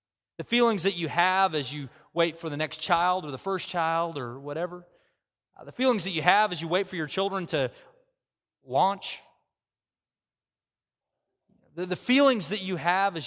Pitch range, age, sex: 130-195 Hz, 30-49, male